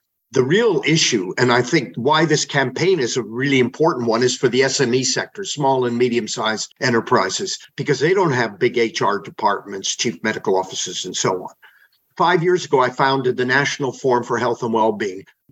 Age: 50-69